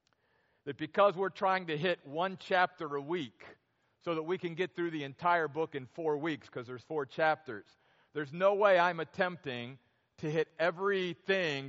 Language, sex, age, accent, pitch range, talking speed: English, male, 50-69, American, 140-175 Hz, 175 wpm